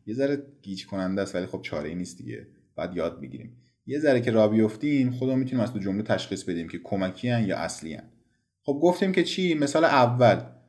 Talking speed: 210 wpm